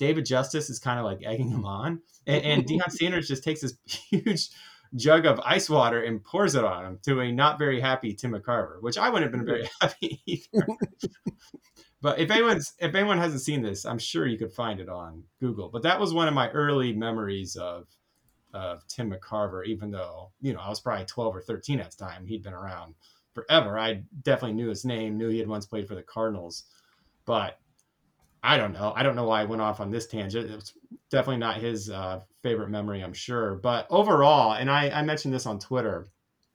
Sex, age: male, 30-49